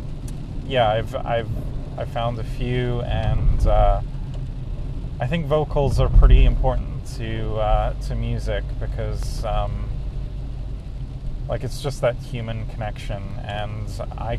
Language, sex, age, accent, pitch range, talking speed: English, male, 30-49, American, 100-125 Hz, 120 wpm